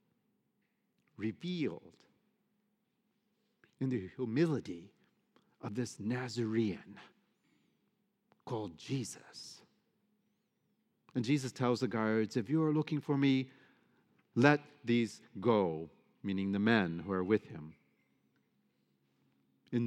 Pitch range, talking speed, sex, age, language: 105-155 Hz, 95 wpm, male, 50-69, English